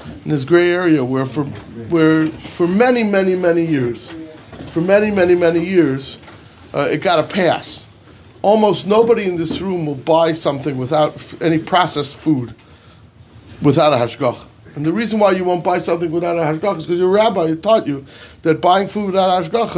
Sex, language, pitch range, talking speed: male, English, 125-180 Hz, 180 wpm